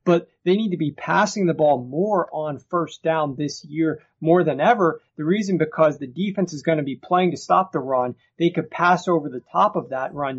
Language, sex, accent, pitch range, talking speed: English, male, American, 140-170 Hz, 230 wpm